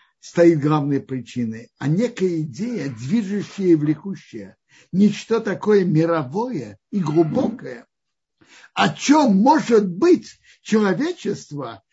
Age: 60-79